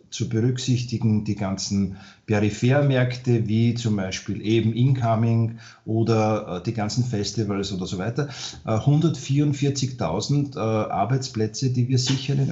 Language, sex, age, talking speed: German, male, 40-59, 110 wpm